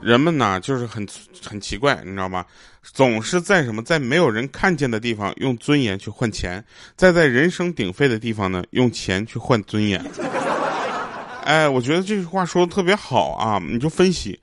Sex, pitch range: male, 110-155 Hz